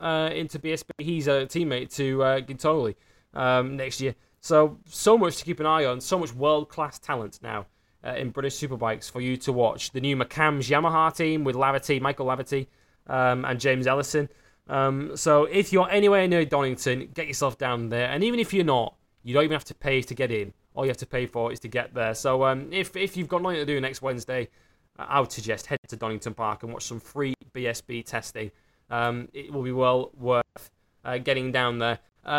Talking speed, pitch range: 215 wpm, 120-155 Hz